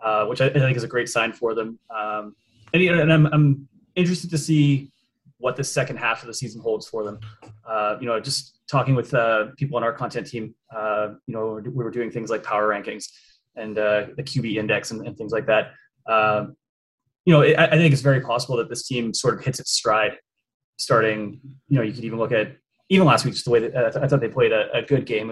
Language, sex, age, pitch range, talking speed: English, male, 20-39, 110-140 Hz, 235 wpm